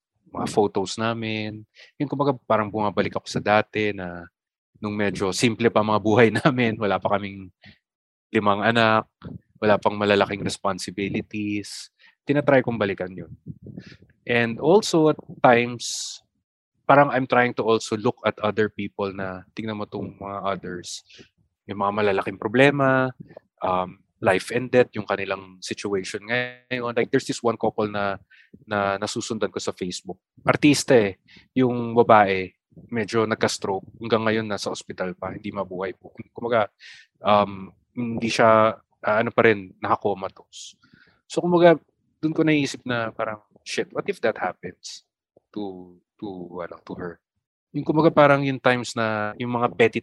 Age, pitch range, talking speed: 20-39, 100-120 Hz, 150 wpm